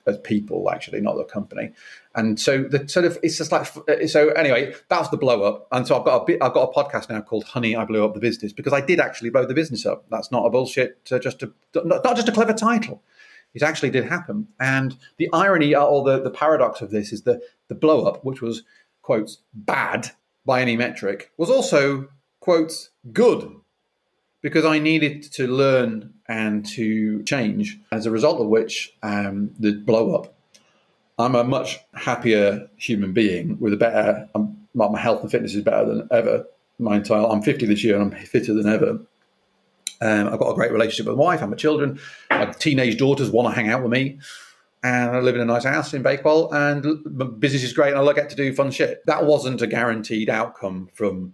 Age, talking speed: 30-49, 210 wpm